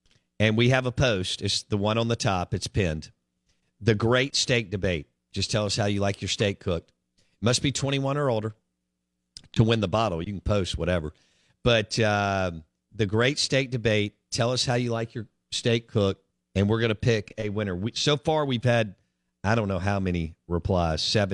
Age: 50-69